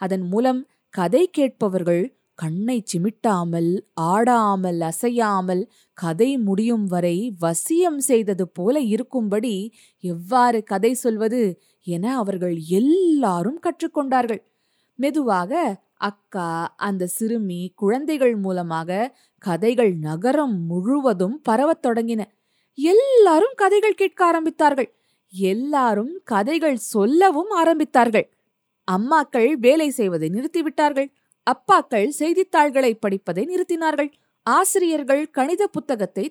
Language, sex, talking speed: Tamil, female, 85 wpm